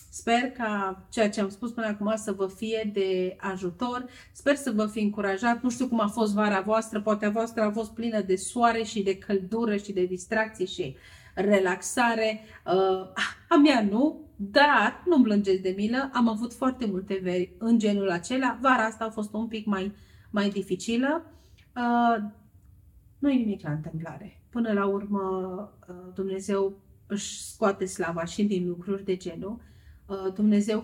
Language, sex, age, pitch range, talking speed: Romanian, female, 30-49, 185-220 Hz, 165 wpm